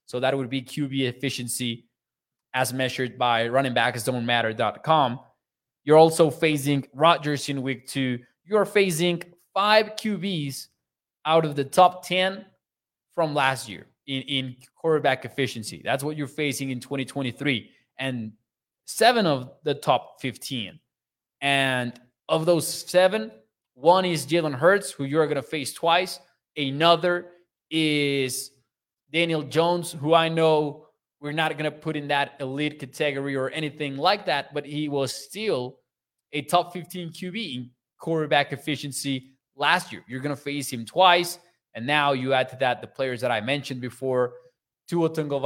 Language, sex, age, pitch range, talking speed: English, male, 20-39, 130-165 Hz, 150 wpm